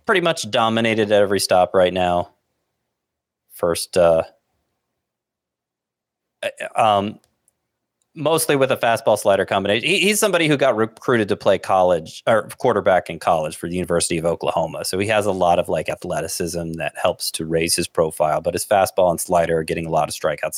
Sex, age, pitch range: male, 30-49, 90-110 Hz